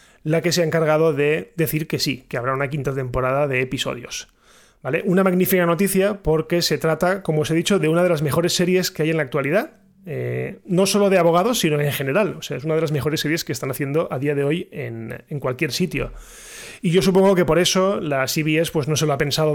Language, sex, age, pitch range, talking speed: Spanish, male, 20-39, 145-175 Hz, 230 wpm